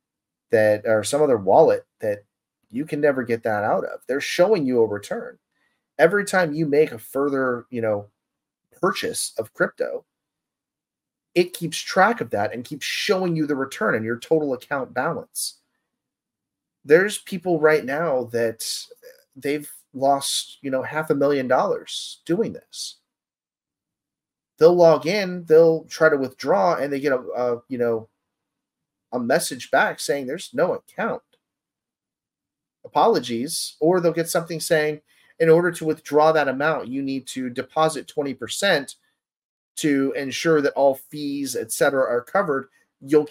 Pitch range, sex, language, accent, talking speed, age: 130-180 Hz, male, English, American, 150 wpm, 30-49